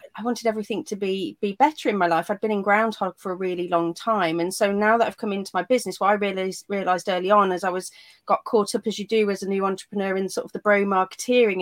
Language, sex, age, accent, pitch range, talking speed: English, female, 30-49, British, 190-220 Hz, 280 wpm